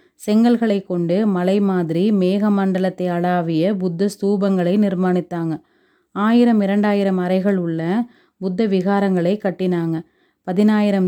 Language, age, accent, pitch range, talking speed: Tamil, 30-49, native, 180-205 Hz, 90 wpm